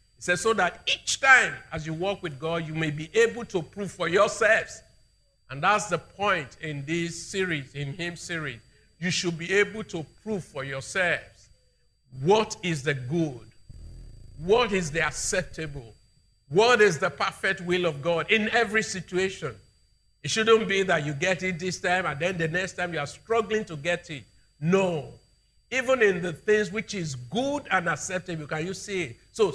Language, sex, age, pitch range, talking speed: English, male, 50-69, 140-190 Hz, 185 wpm